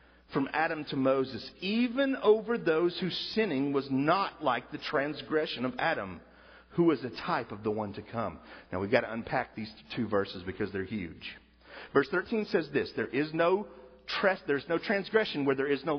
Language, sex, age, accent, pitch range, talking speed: English, male, 50-69, American, 110-180 Hz, 180 wpm